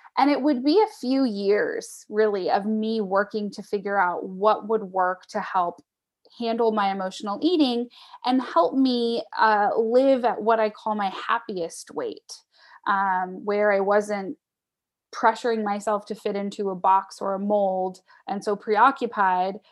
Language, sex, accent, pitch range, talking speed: English, female, American, 200-245 Hz, 160 wpm